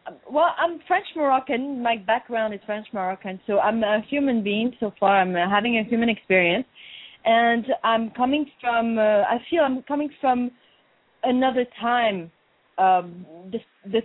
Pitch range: 190-240 Hz